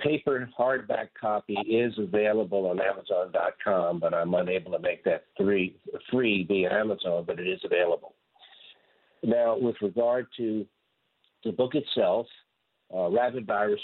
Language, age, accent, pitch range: English, 60-79, American, 110-145 Hz